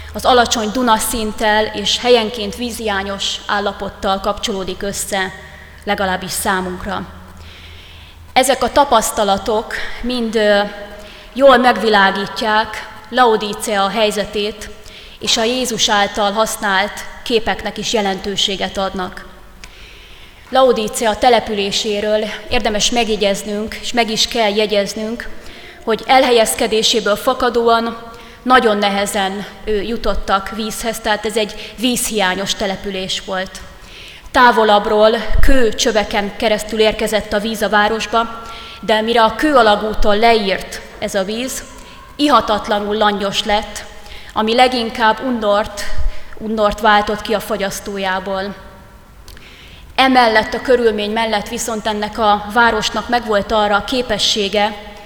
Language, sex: Hungarian, female